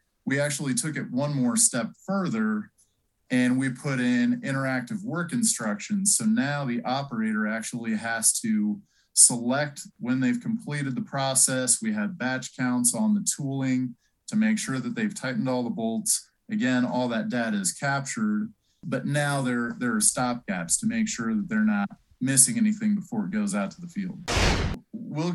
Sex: male